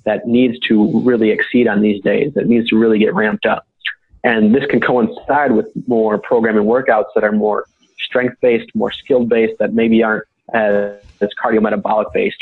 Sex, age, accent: male, 30-49, American